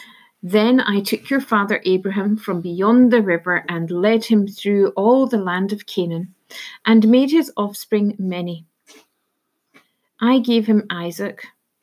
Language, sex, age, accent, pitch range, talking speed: English, female, 50-69, British, 195-240 Hz, 140 wpm